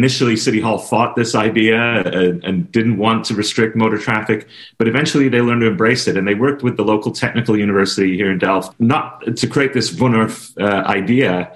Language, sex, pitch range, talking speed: English, male, 100-120 Hz, 190 wpm